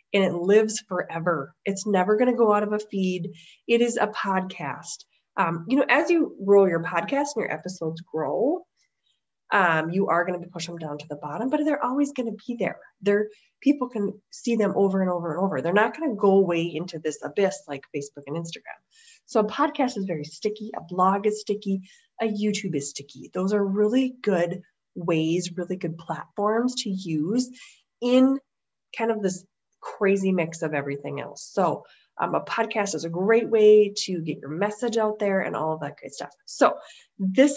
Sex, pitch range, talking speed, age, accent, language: female, 170-240 Hz, 200 wpm, 30-49, American, English